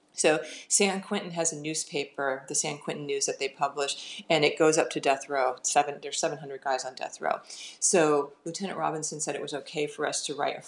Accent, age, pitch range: American, 40-59, 145-170 Hz